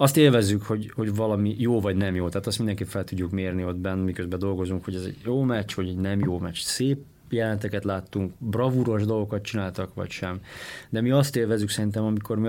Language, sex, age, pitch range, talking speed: Hungarian, male, 30-49, 105-130 Hz, 210 wpm